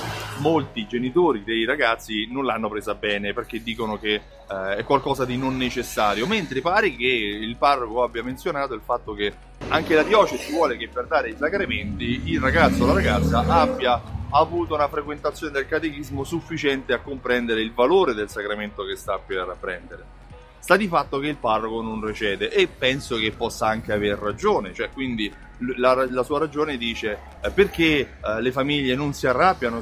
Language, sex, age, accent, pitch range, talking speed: Italian, male, 30-49, native, 115-150 Hz, 175 wpm